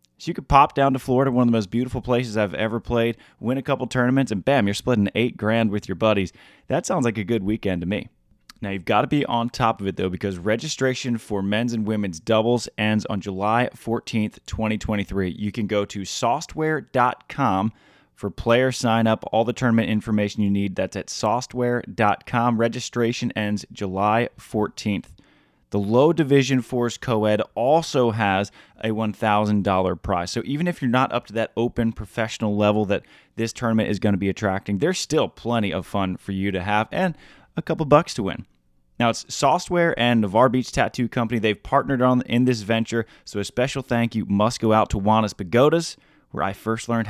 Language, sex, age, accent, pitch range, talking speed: English, male, 20-39, American, 105-125 Hz, 195 wpm